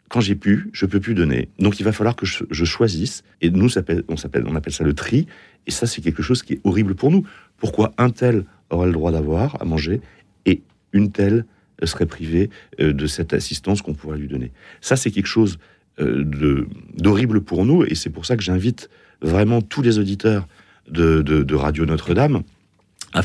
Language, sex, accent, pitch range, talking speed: French, male, French, 80-110 Hz, 200 wpm